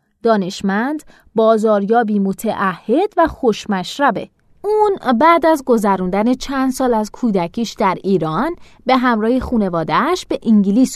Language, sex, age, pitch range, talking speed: Persian, female, 30-49, 195-270 Hz, 110 wpm